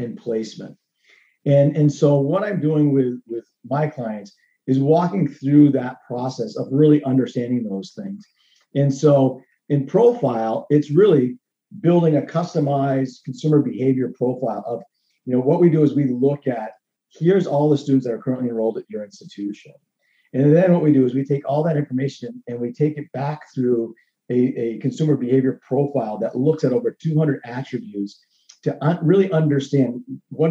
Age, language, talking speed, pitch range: 40-59, English, 170 wpm, 125-150 Hz